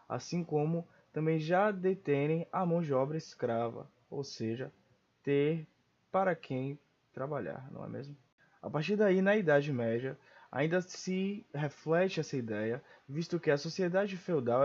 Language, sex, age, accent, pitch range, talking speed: Portuguese, male, 20-39, Brazilian, 135-185 Hz, 145 wpm